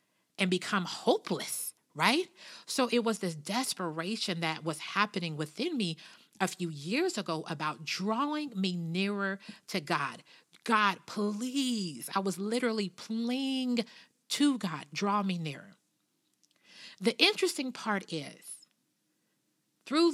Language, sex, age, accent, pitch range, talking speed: English, female, 40-59, American, 165-215 Hz, 120 wpm